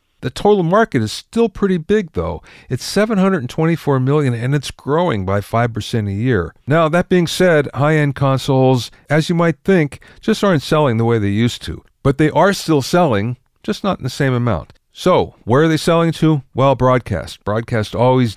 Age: 50-69